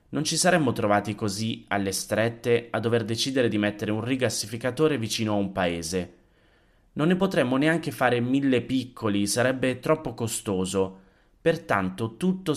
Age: 30-49